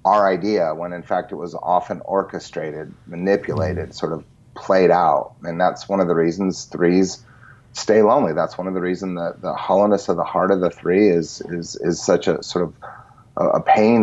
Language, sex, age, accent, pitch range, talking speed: English, male, 30-49, American, 90-110 Hz, 195 wpm